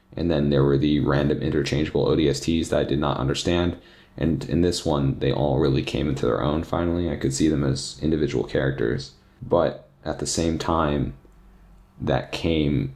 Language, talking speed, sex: English, 180 wpm, male